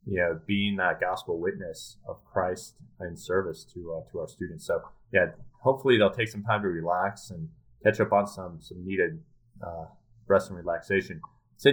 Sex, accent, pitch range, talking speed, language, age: male, American, 90-120 Hz, 185 wpm, English, 30-49